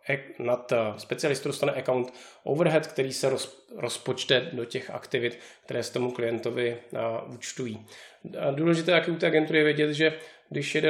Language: Czech